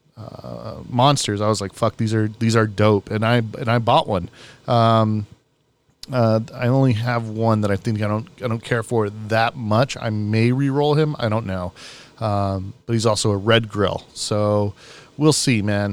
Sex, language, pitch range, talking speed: male, English, 110-125 Hz, 195 wpm